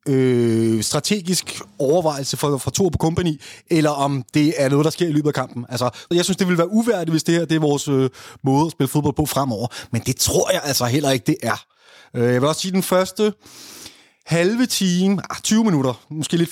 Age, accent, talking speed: 30-49, native, 220 wpm